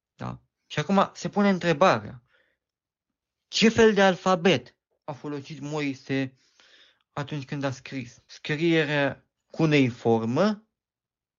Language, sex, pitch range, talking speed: Romanian, male, 140-180 Hz, 100 wpm